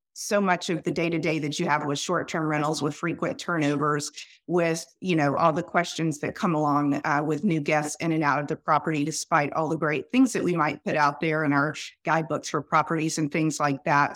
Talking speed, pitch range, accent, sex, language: 225 wpm, 155-180 Hz, American, female, English